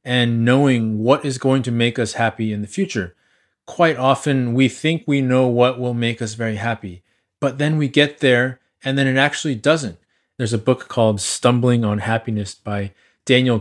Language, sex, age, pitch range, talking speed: English, male, 20-39, 115-140 Hz, 190 wpm